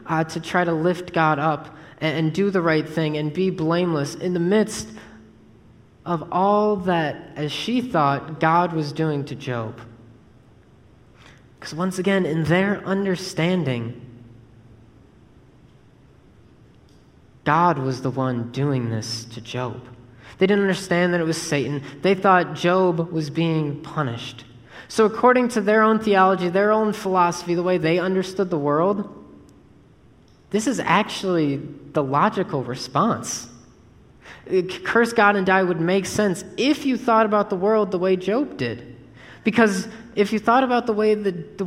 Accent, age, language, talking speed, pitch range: American, 20-39, English, 150 wpm, 135-195 Hz